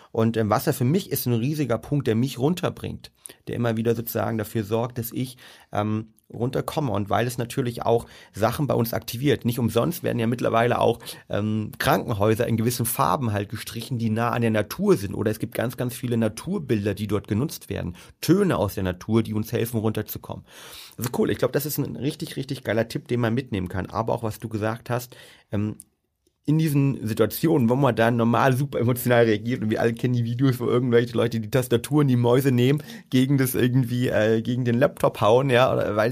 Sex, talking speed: male, 205 wpm